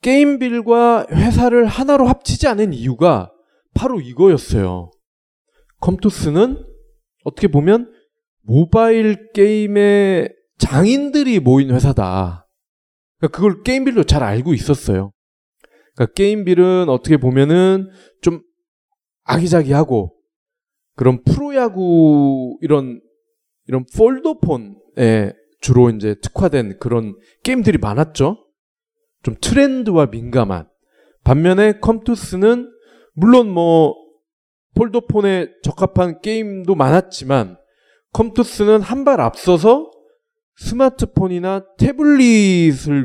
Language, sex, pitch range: Korean, male, 140-235 Hz